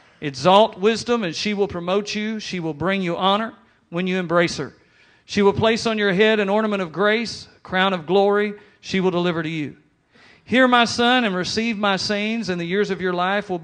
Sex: male